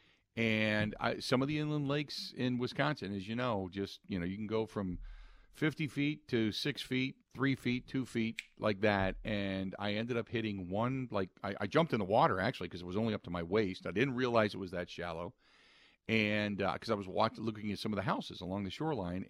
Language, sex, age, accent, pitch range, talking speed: English, male, 50-69, American, 90-115 Hz, 225 wpm